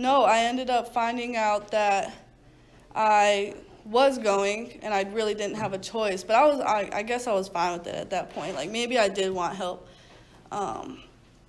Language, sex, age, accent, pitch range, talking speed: English, female, 20-39, American, 200-240 Hz, 200 wpm